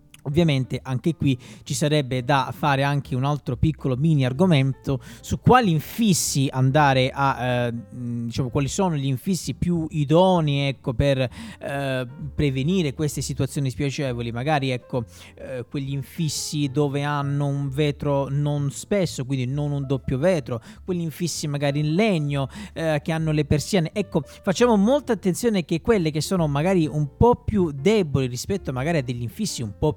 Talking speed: 160 wpm